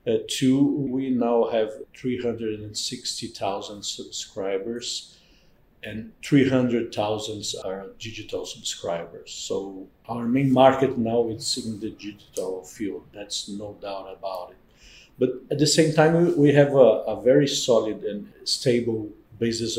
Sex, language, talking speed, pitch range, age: male, English, 145 wpm, 115-135 Hz, 50-69